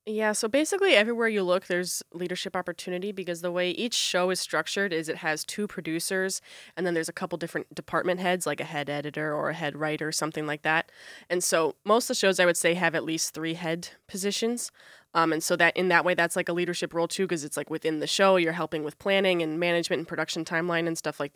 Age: 20-39